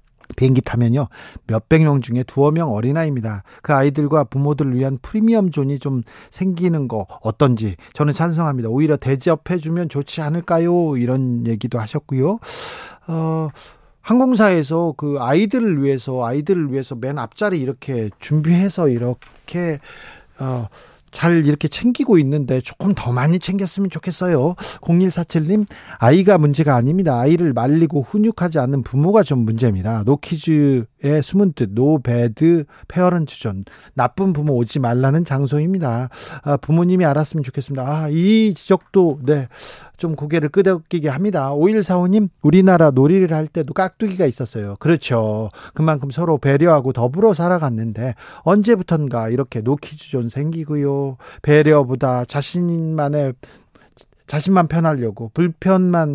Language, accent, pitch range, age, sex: Korean, native, 130-175 Hz, 40-59, male